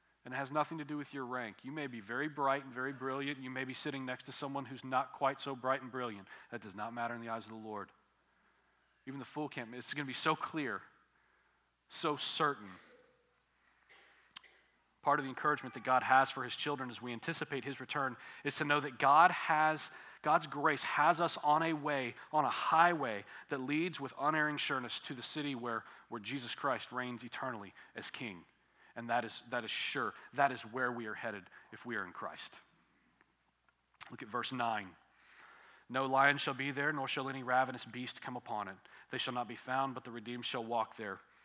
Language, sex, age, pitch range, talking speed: English, male, 40-59, 125-150 Hz, 210 wpm